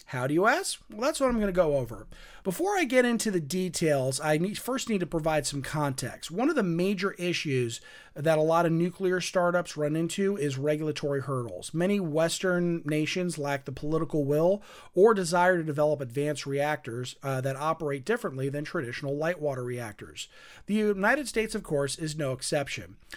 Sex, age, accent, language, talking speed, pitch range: male, 40-59, American, English, 185 wpm, 135-185 Hz